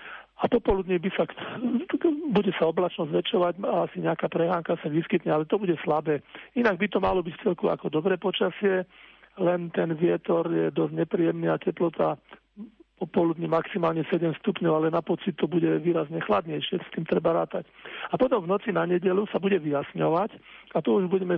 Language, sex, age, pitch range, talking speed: Slovak, male, 50-69, 165-190 Hz, 170 wpm